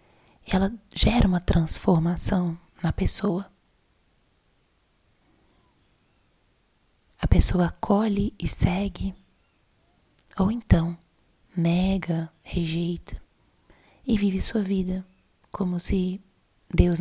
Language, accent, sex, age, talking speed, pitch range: Portuguese, Brazilian, female, 20-39, 80 wpm, 175-200 Hz